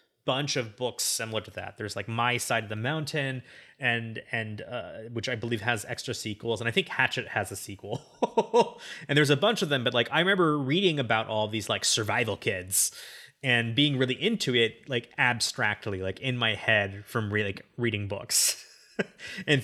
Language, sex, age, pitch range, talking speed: English, male, 20-39, 105-135 Hz, 195 wpm